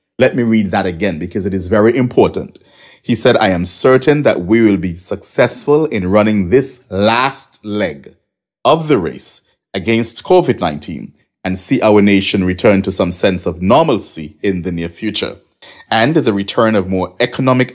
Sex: male